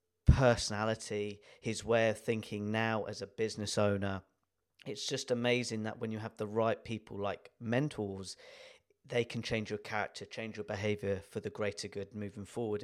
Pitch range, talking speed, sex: 100-115 Hz, 170 wpm, male